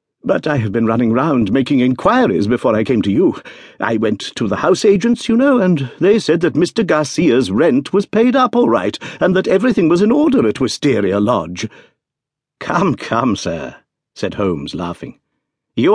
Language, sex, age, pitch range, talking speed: English, male, 60-79, 115-185 Hz, 185 wpm